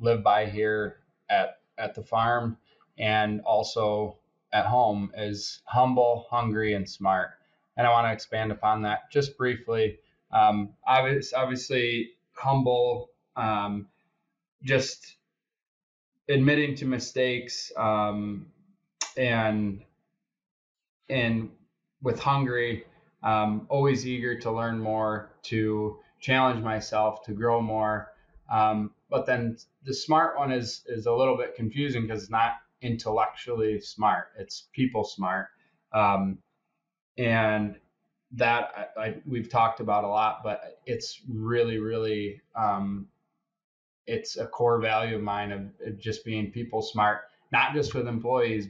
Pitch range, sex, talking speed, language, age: 110-130 Hz, male, 125 wpm, English, 20-39